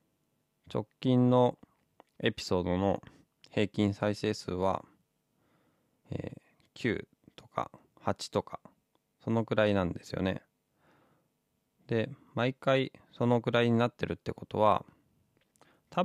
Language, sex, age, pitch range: Japanese, male, 20-39, 90-120 Hz